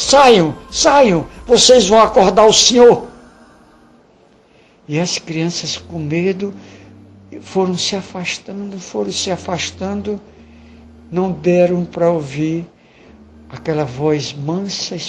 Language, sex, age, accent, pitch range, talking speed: Portuguese, male, 60-79, Brazilian, 145-205 Hz, 105 wpm